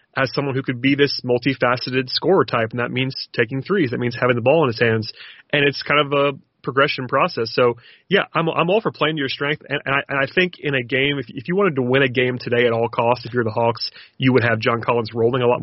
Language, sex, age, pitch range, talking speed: English, male, 30-49, 120-135 Hz, 275 wpm